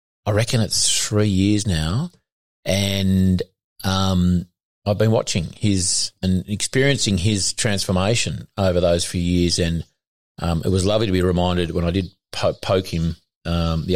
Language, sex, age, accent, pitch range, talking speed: English, male, 40-59, Australian, 85-105 Hz, 155 wpm